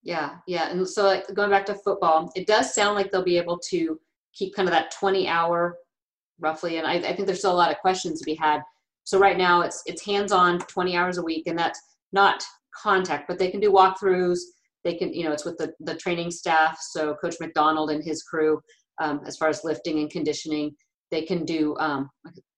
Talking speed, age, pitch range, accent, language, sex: 220 wpm, 40-59, 155-190 Hz, American, English, female